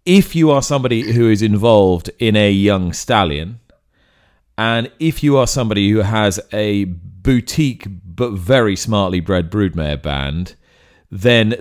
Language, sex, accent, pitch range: English, male, British, 85-105 Hz